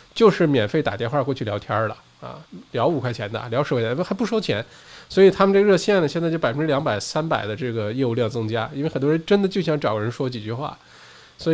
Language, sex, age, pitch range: Chinese, male, 20-39, 115-155 Hz